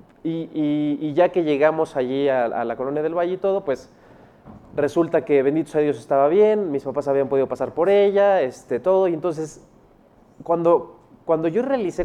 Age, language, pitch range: 30-49, Spanish, 140-180 Hz